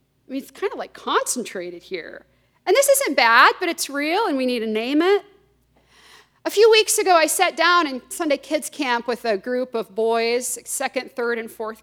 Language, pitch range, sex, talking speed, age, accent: English, 220-320 Hz, female, 210 wpm, 40-59, American